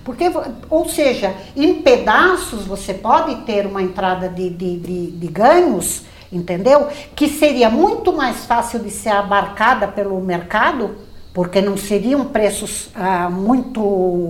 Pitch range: 200-270 Hz